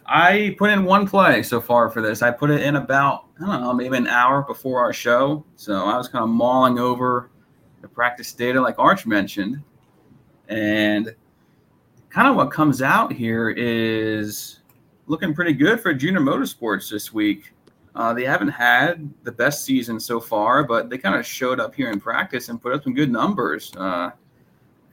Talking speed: 185 wpm